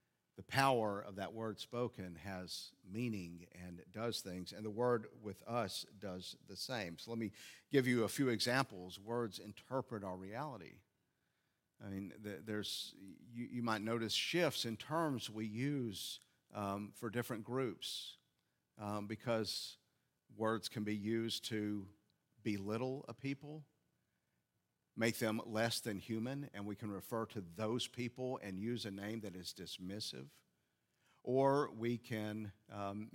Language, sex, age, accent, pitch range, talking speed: English, male, 50-69, American, 100-120 Hz, 140 wpm